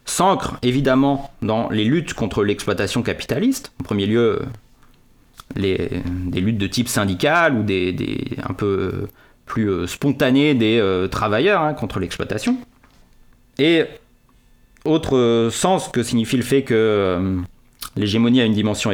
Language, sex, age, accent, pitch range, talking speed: French, male, 30-49, French, 100-140 Hz, 135 wpm